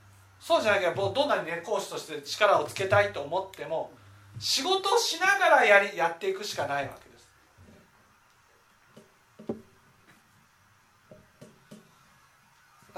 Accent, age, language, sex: native, 40-59, Japanese, male